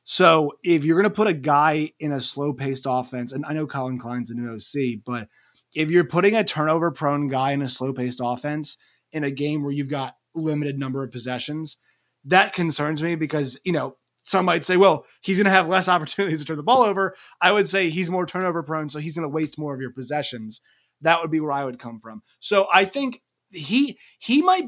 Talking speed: 230 wpm